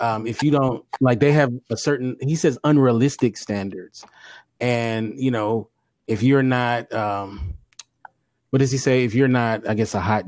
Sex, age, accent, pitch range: male, 30-49, American, 110-135 Hz